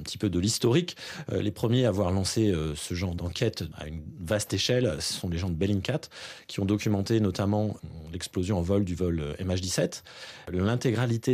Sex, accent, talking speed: male, French, 180 wpm